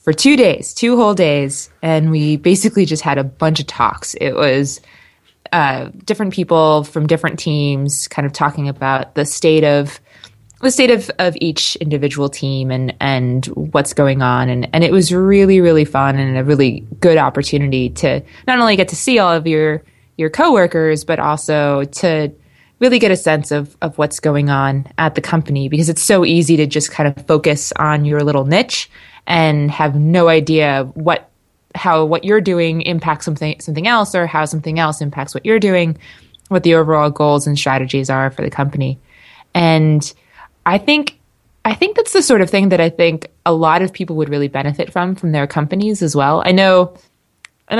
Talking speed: 190 wpm